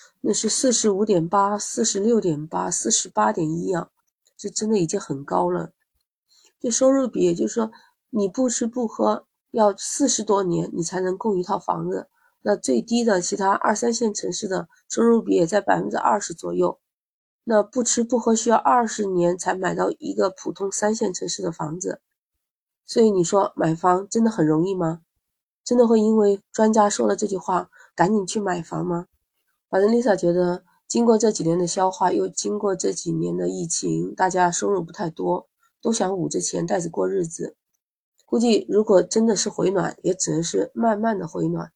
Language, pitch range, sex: Chinese, 175-220 Hz, female